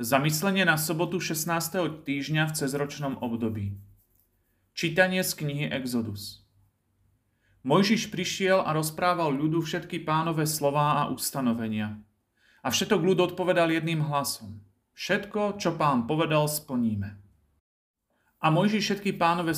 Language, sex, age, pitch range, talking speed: Slovak, male, 40-59, 120-185 Hz, 115 wpm